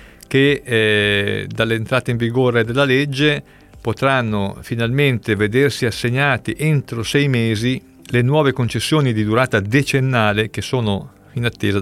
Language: Italian